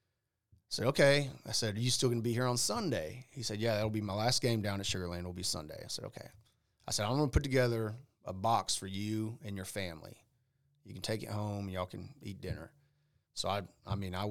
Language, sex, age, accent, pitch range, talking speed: English, male, 30-49, American, 95-115 Hz, 255 wpm